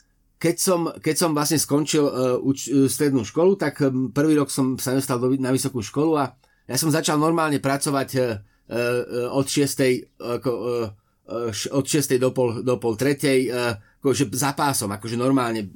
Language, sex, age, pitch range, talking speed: Slovak, male, 30-49, 130-170 Hz, 160 wpm